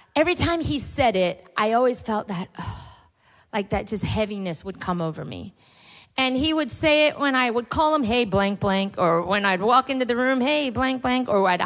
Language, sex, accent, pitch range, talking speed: English, female, American, 180-245 Hz, 220 wpm